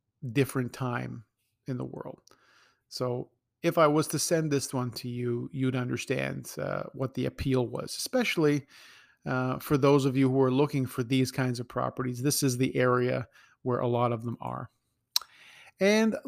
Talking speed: 175 wpm